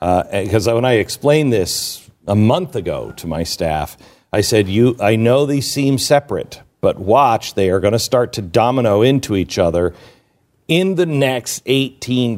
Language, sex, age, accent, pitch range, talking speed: English, male, 50-69, American, 85-115 Hz, 175 wpm